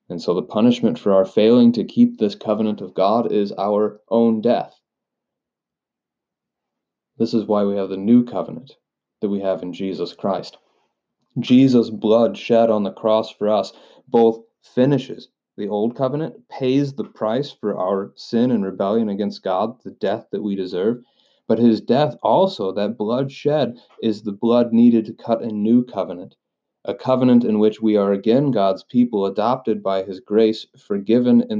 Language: English